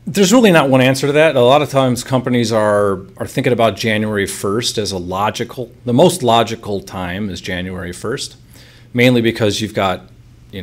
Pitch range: 95-120 Hz